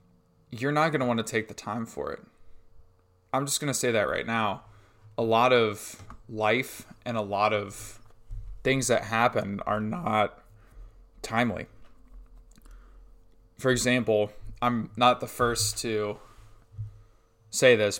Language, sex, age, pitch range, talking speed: English, male, 20-39, 105-120 Hz, 140 wpm